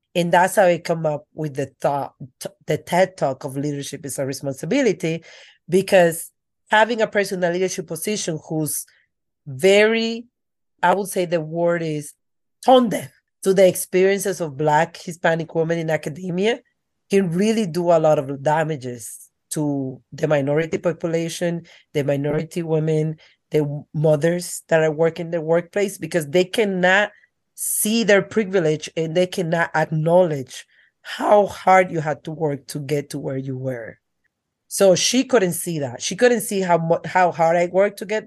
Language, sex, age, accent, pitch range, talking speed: English, female, 40-59, Spanish, 150-185 Hz, 160 wpm